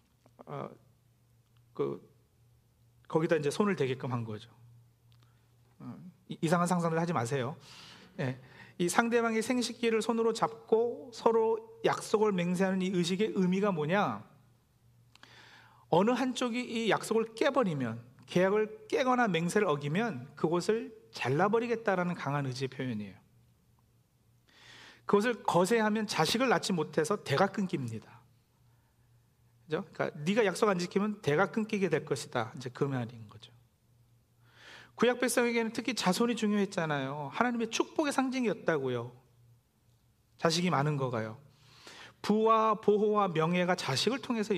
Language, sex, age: Korean, male, 40-59